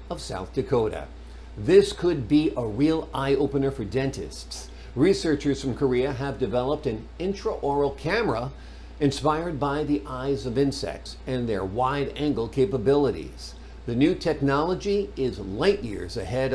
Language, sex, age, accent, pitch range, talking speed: English, male, 50-69, American, 110-155 Hz, 140 wpm